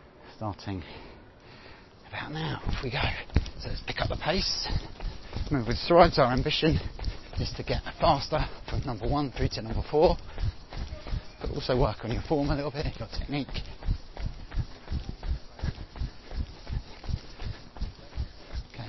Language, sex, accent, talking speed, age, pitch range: English, male, British, 125 wpm, 30-49, 90-120 Hz